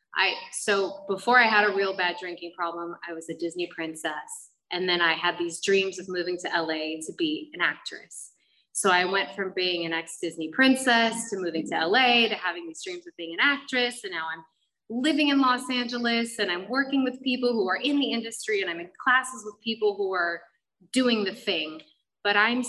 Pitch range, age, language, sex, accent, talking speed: 165-220 Hz, 20-39, English, female, American, 210 wpm